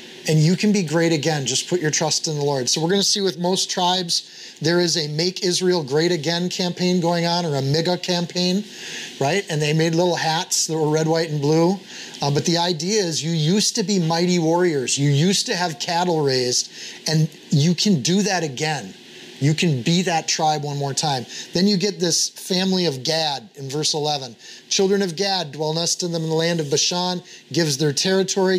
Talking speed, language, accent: 210 wpm, English, American